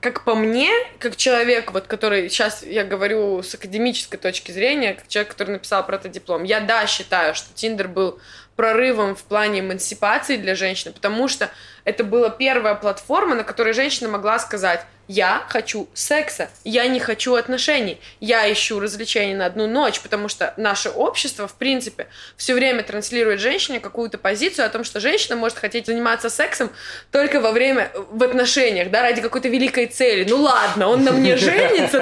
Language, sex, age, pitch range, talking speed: Russian, female, 20-39, 200-260 Hz, 175 wpm